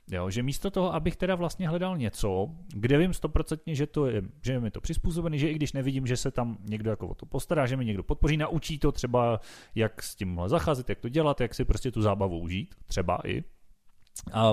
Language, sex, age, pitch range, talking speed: Czech, male, 30-49, 110-150 Hz, 225 wpm